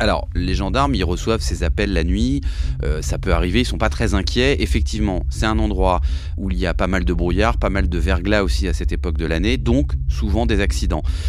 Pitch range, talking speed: 70-90 Hz, 240 wpm